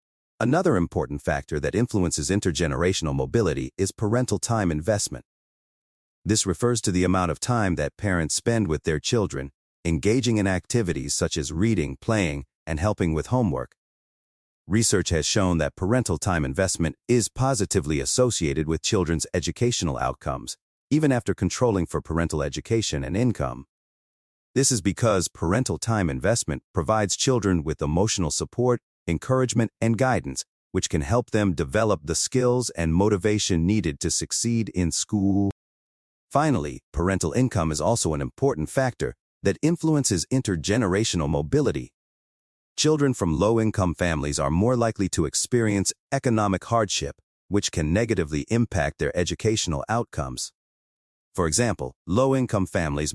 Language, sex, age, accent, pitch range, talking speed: English, male, 40-59, American, 80-115 Hz, 135 wpm